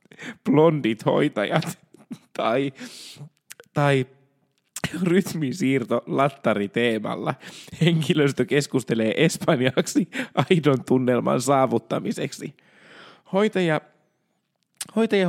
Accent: native